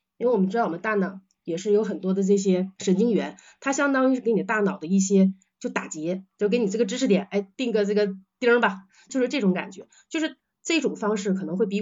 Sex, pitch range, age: female, 185-215 Hz, 30-49